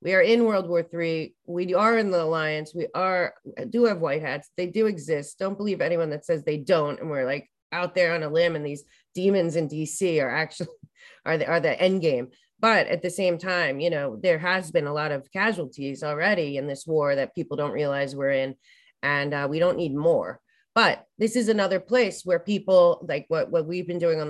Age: 30-49